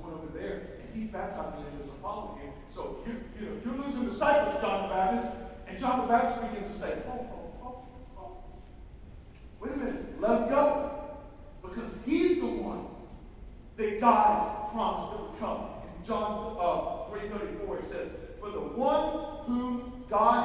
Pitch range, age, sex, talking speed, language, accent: 235-300 Hz, 40-59, male, 175 wpm, English, American